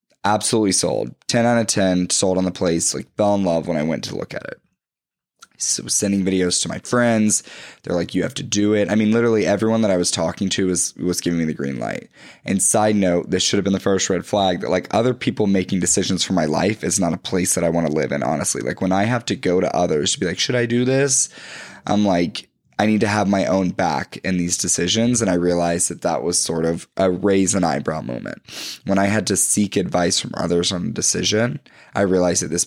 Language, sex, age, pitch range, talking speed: English, male, 10-29, 90-105 Hz, 250 wpm